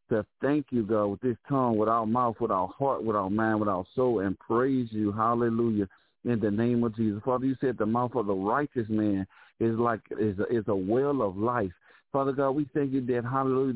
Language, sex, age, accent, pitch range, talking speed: English, male, 50-69, American, 115-135 Hz, 230 wpm